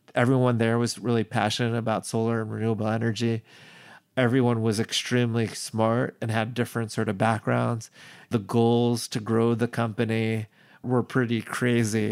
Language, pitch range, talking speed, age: English, 110-125 Hz, 145 wpm, 30-49